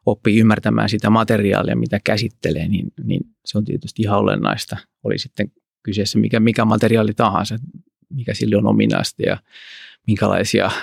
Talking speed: 145 wpm